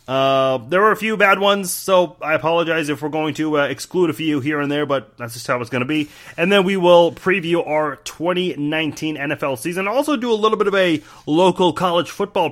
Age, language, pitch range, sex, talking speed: 30-49, English, 135-170 Hz, male, 230 wpm